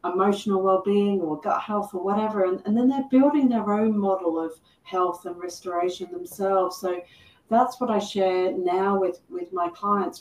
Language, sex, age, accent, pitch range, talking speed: English, female, 40-59, British, 180-210 Hz, 175 wpm